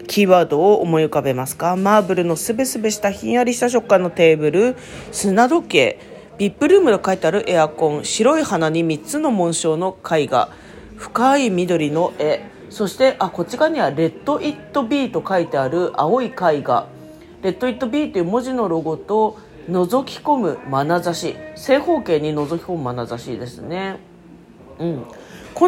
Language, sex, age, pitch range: Japanese, female, 40-59, 160-250 Hz